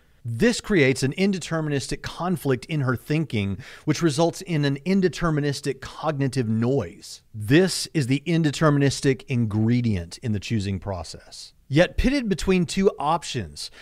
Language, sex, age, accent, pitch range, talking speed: English, male, 40-59, American, 115-170 Hz, 125 wpm